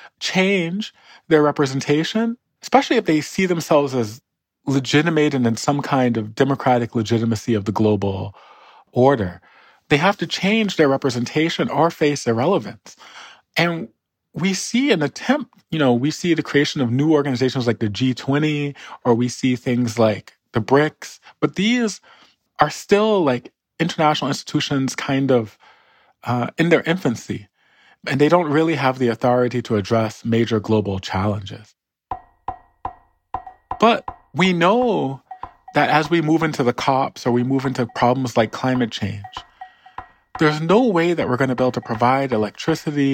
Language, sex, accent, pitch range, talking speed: English, male, American, 120-155 Hz, 150 wpm